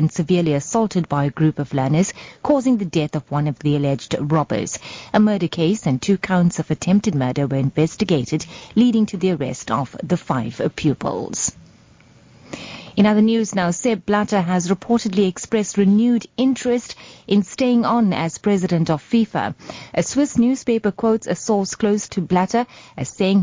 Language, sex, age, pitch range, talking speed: English, female, 30-49, 160-215 Hz, 165 wpm